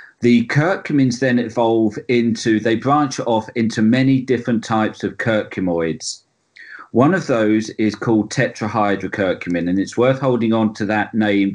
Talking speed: 145 wpm